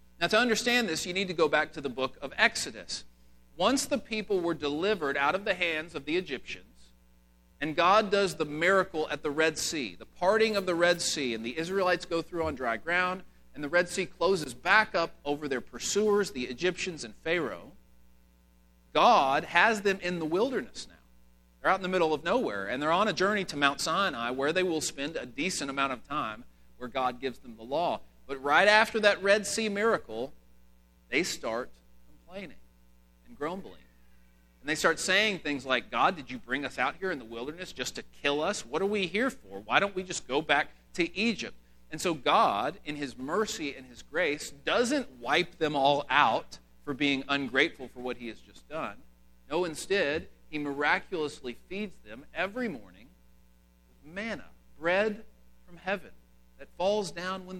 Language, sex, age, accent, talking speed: English, male, 40-59, American, 195 wpm